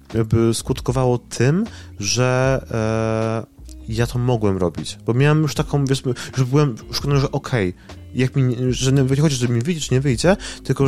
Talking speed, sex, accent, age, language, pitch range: 160 wpm, male, native, 20-39, Polish, 100-130 Hz